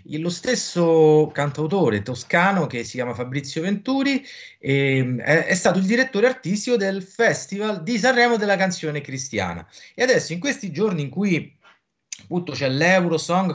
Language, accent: Italian, native